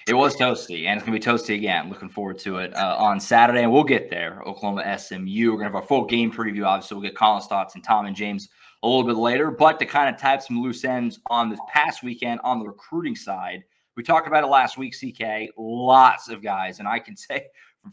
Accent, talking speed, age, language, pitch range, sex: American, 250 wpm, 20-39, English, 105-130 Hz, male